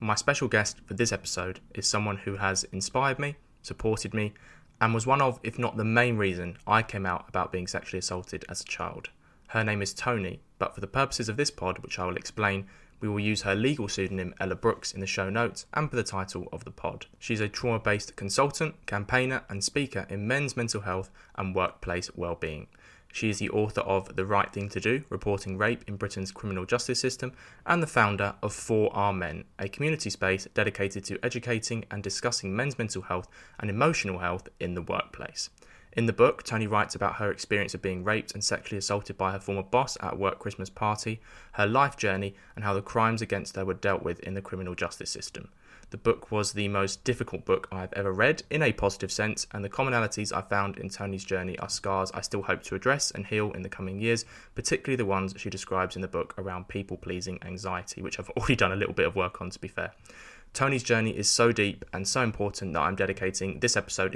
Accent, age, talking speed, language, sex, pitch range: British, 20-39, 220 wpm, English, male, 95-115 Hz